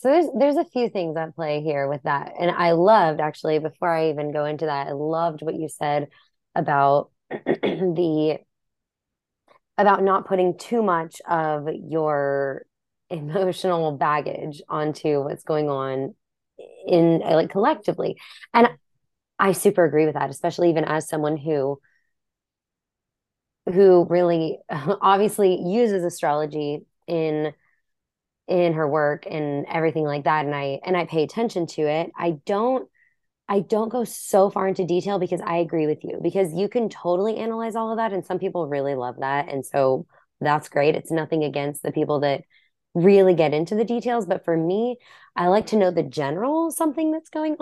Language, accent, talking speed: English, American, 165 wpm